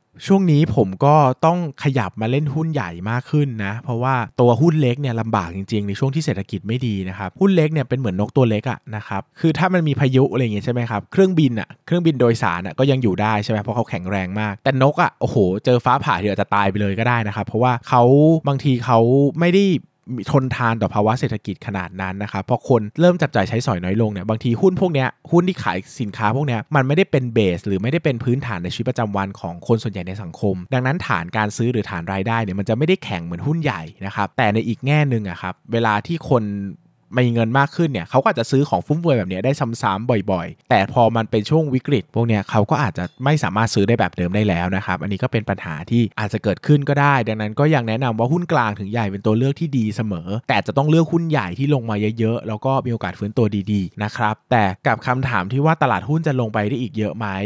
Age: 20-39